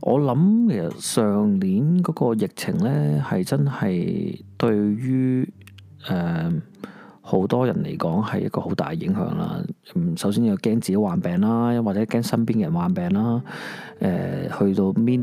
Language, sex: Chinese, male